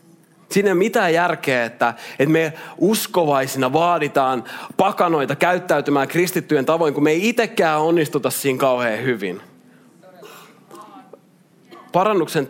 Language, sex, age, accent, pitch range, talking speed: Finnish, male, 30-49, native, 135-180 Hz, 100 wpm